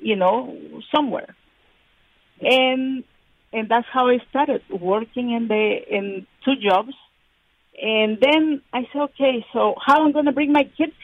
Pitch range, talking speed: 205-275 Hz, 150 wpm